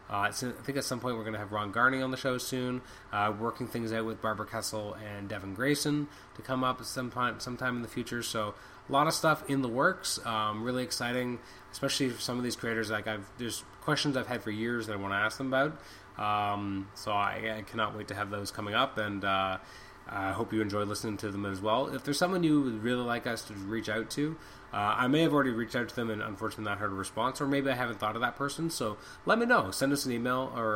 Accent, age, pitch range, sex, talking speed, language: American, 20-39, 105-125 Hz, male, 255 wpm, English